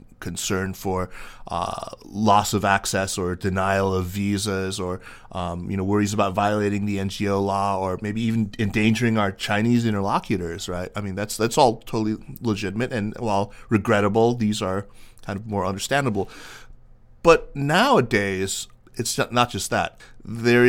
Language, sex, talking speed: English, male, 150 wpm